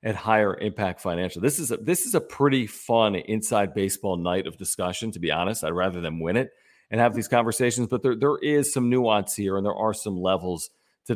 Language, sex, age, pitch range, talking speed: English, male, 40-59, 95-115 Hz, 225 wpm